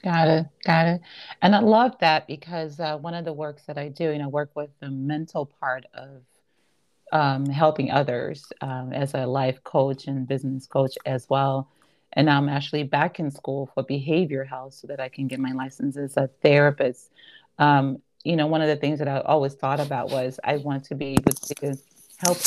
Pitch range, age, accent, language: 135-165 Hz, 30-49, American, English